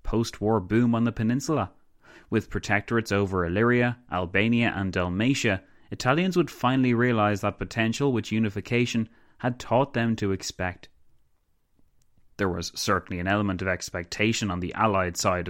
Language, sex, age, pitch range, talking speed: English, male, 20-39, 95-115 Hz, 140 wpm